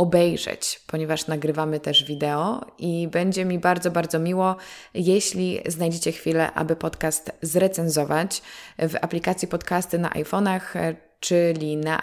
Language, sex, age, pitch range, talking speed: Polish, female, 20-39, 160-185 Hz, 120 wpm